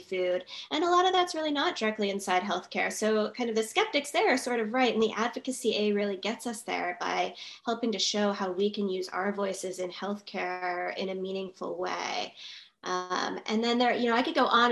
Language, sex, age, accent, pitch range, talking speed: English, female, 10-29, American, 200-245 Hz, 225 wpm